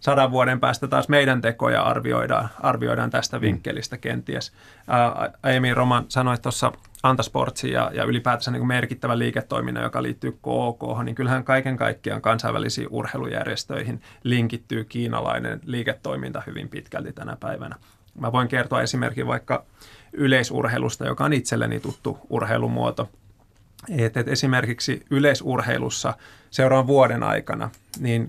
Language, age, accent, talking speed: Finnish, 30-49, native, 120 wpm